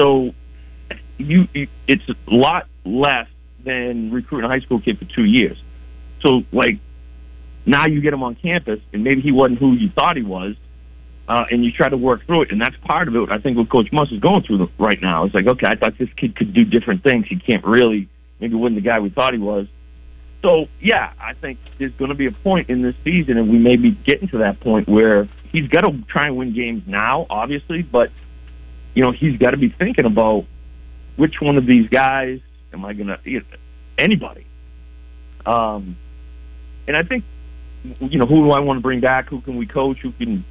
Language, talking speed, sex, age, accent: English, 215 wpm, male, 50-69, American